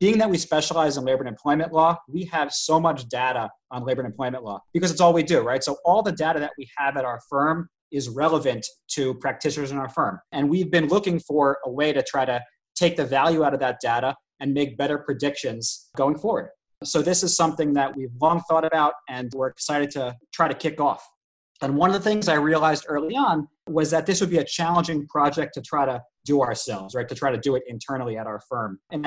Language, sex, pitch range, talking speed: English, male, 135-165 Hz, 235 wpm